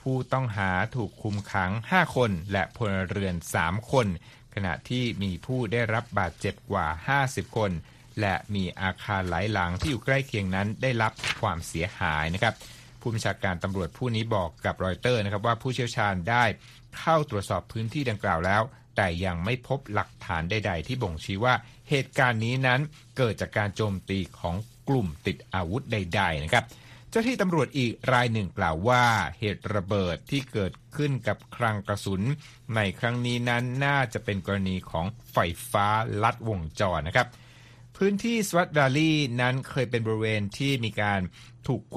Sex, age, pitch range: male, 60-79, 95-125 Hz